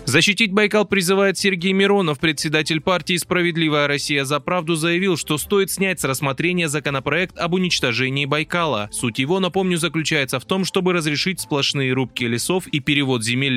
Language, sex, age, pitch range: Russian, male, 20-39, 130-175 Hz